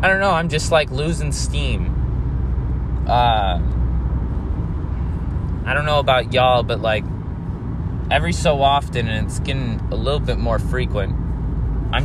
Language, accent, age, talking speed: English, American, 20-39, 140 wpm